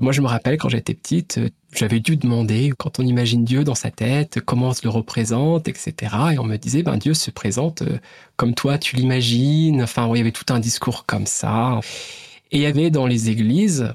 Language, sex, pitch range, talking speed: French, male, 125-180 Hz, 220 wpm